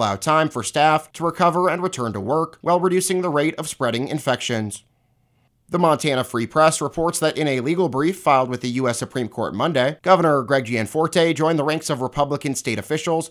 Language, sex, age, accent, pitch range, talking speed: English, male, 30-49, American, 130-170 Hz, 205 wpm